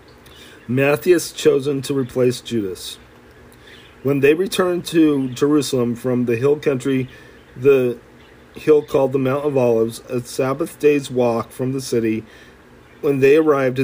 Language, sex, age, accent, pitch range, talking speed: English, male, 40-59, American, 115-140 Hz, 135 wpm